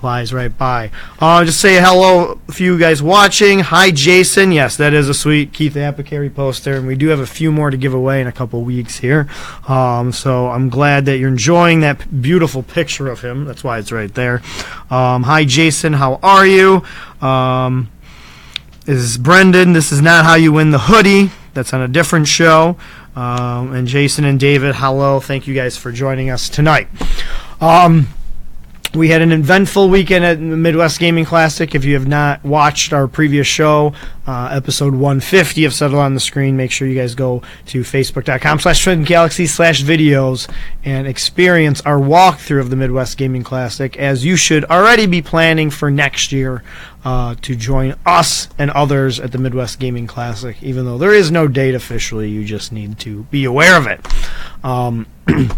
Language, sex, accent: English, male, American